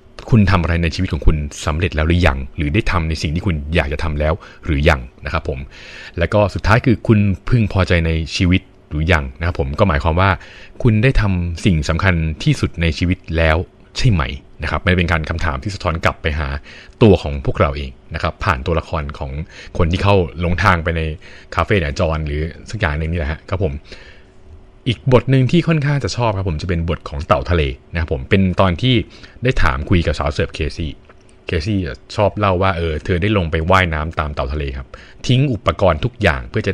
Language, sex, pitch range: Thai, male, 80-100 Hz